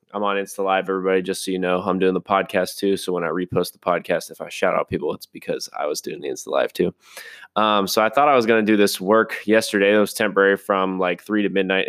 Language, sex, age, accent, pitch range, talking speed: English, male, 20-39, American, 95-110 Hz, 275 wpm